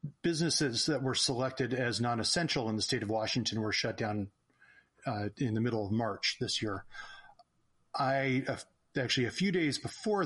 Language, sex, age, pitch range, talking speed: English, male, 40-59, 115-135 Hz, 170 wpm